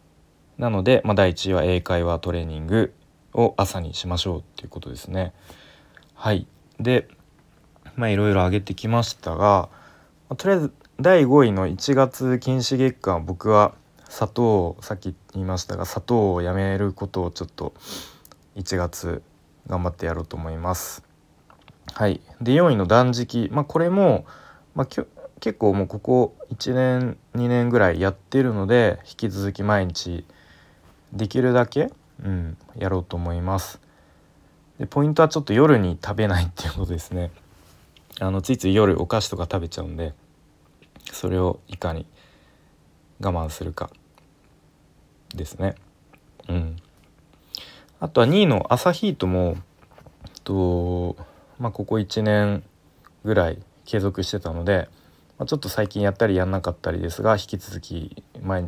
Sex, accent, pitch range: male, native, 85-110 Hz